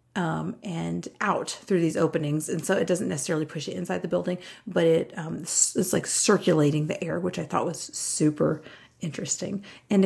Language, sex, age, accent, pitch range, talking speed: English, female, 40-59, American, 165-210 Hz, 190 wpm